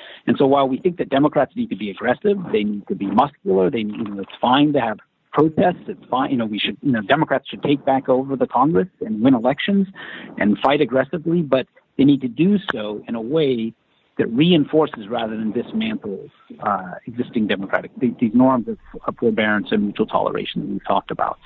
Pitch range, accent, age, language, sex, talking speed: 125-170 Hz, American, 50-69, English, male, 210 wpm